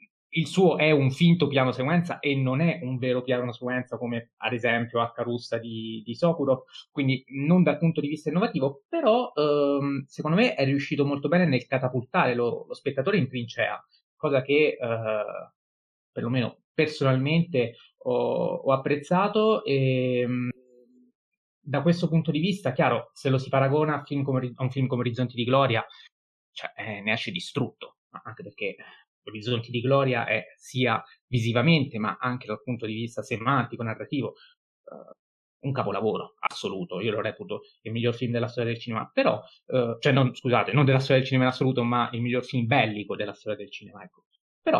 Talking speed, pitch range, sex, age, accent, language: 175 wpm, 120-150 Hz, male, 20-39, native, Italian